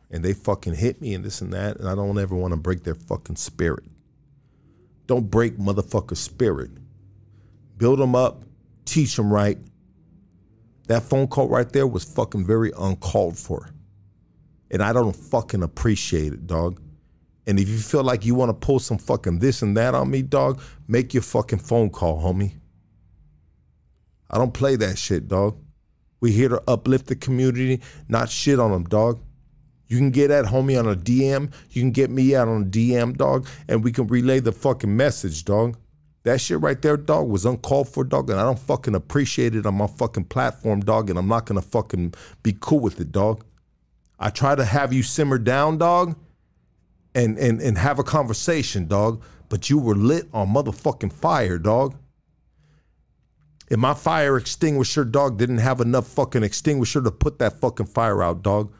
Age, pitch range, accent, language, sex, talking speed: 50-69, 100-130 Hz, American, English, male, 185 wpm